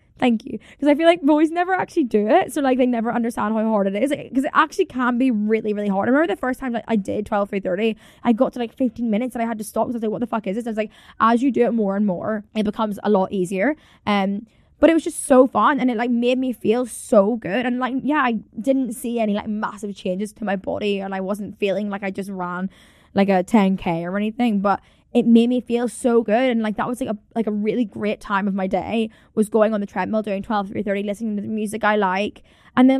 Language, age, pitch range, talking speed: English, 10-29, 200-245 Hz, 275 wpm